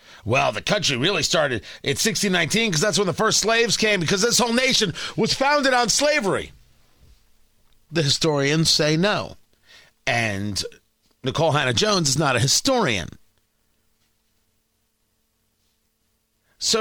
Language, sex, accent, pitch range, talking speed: English, male, American, 125-205 Hz, 120 wpm